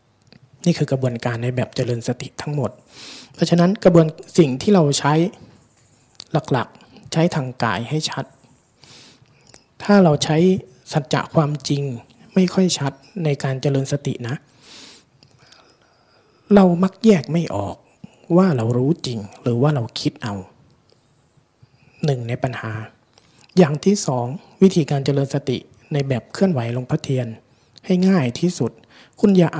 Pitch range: 125-160 Hz